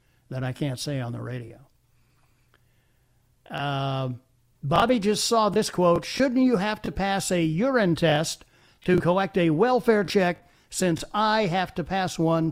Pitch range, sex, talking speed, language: 130-210 Hz, male, 155 wpm, English